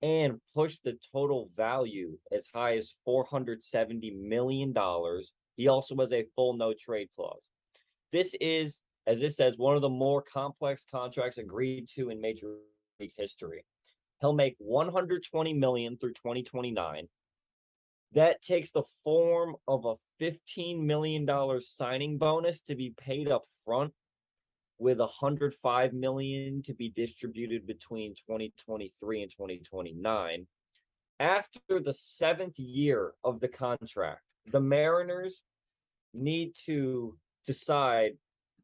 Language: English